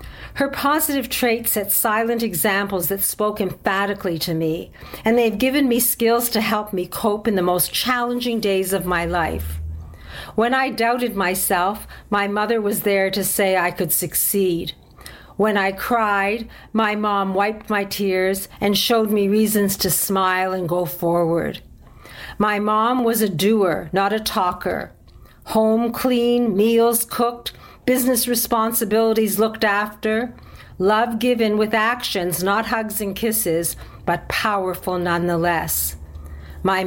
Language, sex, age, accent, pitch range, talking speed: English, female, 50-69, American, 185-225 Hz, 140 wpm